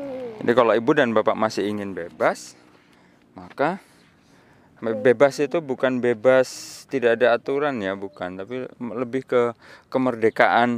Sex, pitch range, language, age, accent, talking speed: male, 115-160 Hz, Indonesian, 20-39, native, 120 wpm